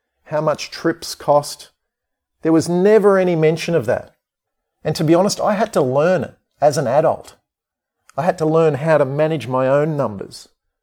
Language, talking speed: English, 185 wpm